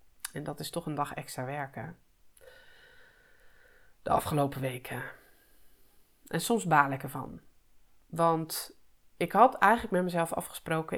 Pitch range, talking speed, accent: 145-190 Hz, 125 wpm, Dutch